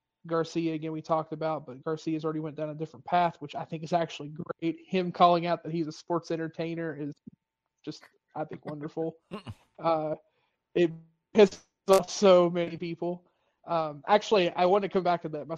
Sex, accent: male, American